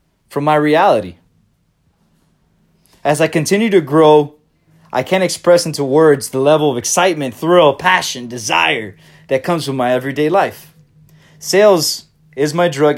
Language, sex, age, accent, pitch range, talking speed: English, male, 20-39, American, 125-165 Hz, 140 wpm